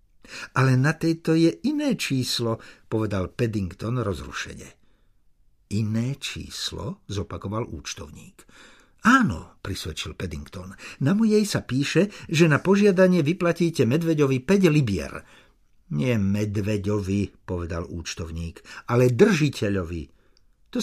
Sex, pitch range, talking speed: male, 95-150 Hz, 100 wpm